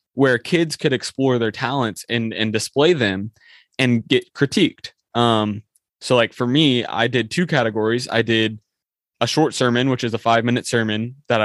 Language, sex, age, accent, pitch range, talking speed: English, male, 20-39, American, 110-125 Hz, 175 wpm